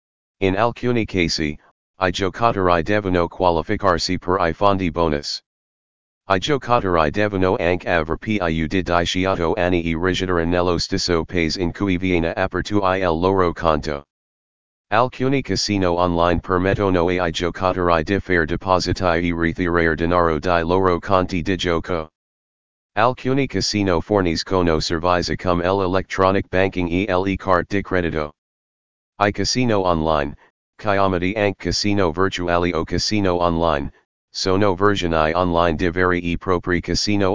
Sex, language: male, Italian